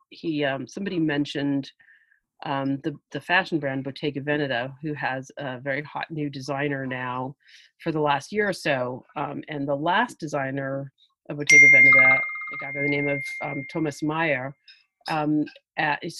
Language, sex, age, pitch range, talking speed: English, female, 40-59, 140-185 Hz, 165 wpm